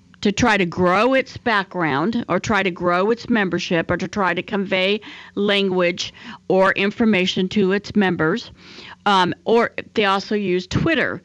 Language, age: English, 50-69